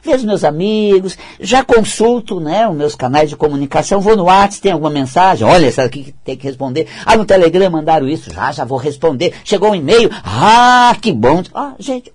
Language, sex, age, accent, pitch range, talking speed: Portuguese, male, 60-79, Brazilian, 135-205 Hz, 200 wpm